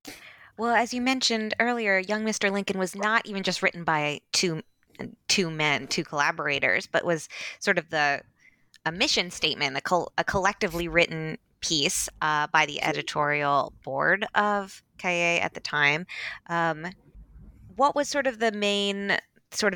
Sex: female